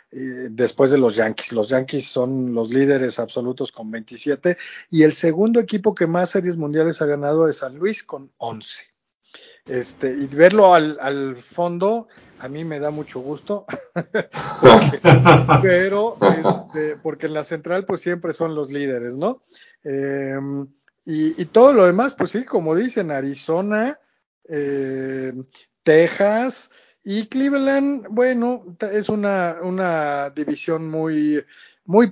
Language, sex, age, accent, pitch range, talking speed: Spanish, male, 40-59, Mexican, 140-200 Hz, 135 wpm